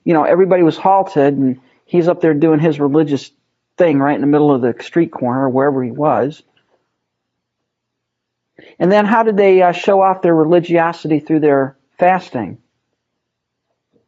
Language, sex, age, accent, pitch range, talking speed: English, male, 40-59, American, 140-180 Hz, 160 wpm